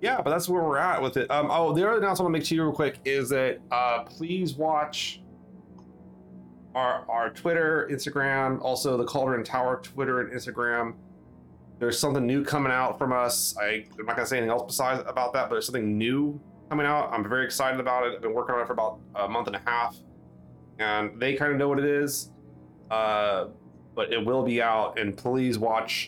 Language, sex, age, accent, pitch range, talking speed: English, male, 30-49, American, 95-140 Hz, 215 wpm